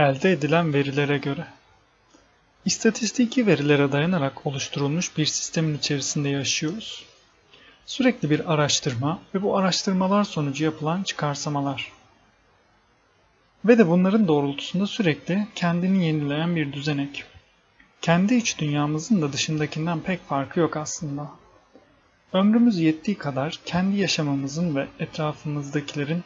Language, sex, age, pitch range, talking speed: Turkish, male, 40-59, 145-190 Hz, 105 wpm